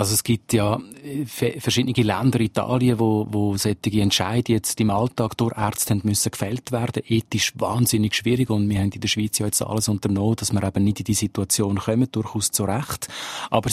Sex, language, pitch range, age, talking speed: male, German, 110-125 Hz, 40-59, 195 wpm